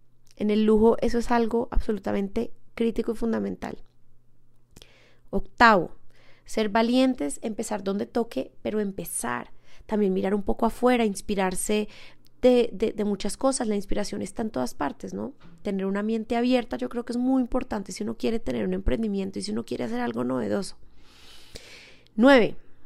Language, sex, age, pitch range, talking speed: Spanish, female, 30-49, 185-245 Hz, 160 wpm